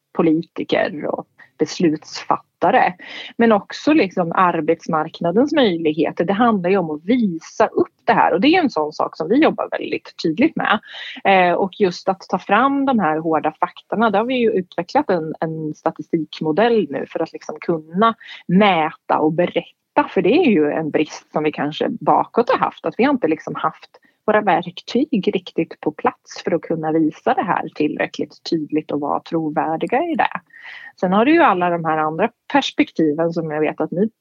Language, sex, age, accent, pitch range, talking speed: Swedish, female, 30-49, native, 160-210 Hz, 185 wpm